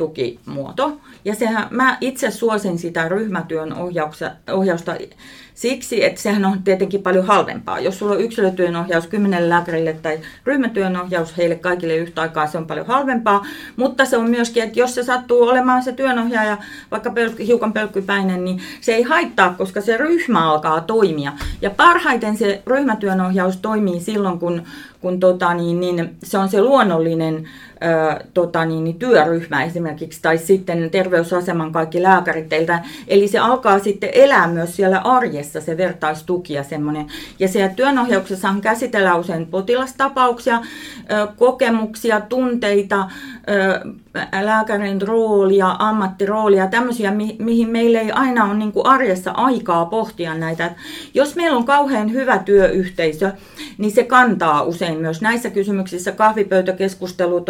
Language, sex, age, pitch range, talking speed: Finnish, female, 30-49, 175-230 Hz, 135 wpm